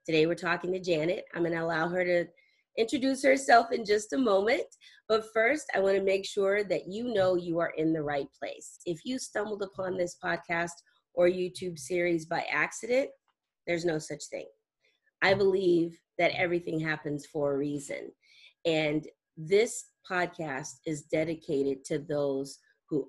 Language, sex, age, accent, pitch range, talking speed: English, female, 30-49, American, 155-195 Hz, 165 wpm